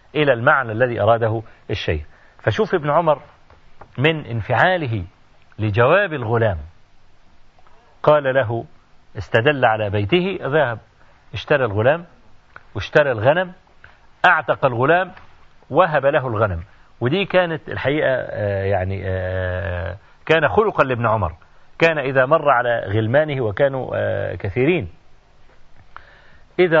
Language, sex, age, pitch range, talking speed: Arabic, male, 40-59, 100-150 Hz, 95 wpm